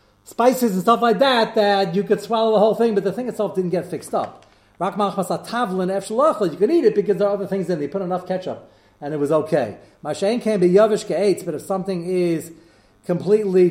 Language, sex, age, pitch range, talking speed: English, male, 40-59, 150-200 Hz, 195 wpm